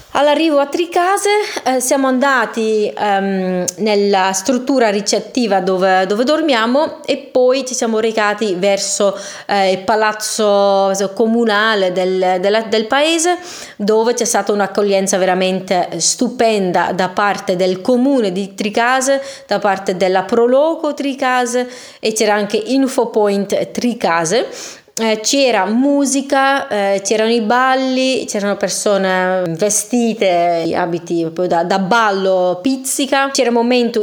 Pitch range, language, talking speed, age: 190-245 Hz, Italian, 120 wpm, 20-39